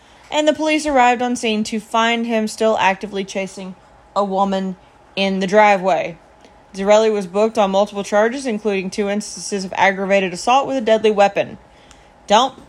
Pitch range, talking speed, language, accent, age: 185-230 Hz, 160 wpm, English, American, 30-49